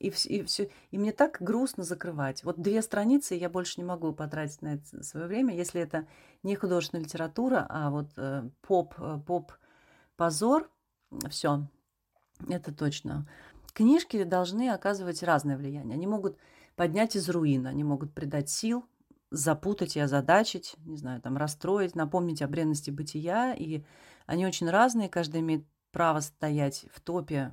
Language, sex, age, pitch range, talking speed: Russian, female, 30-49, 150-185 Hz, 150 wpm